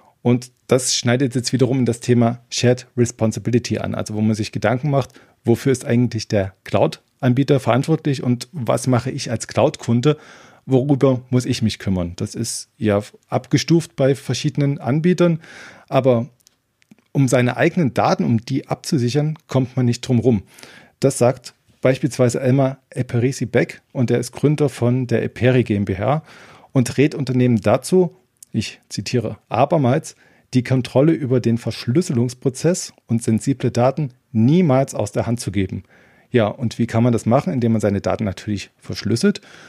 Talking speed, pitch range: 155 wpm, 115-140 Hz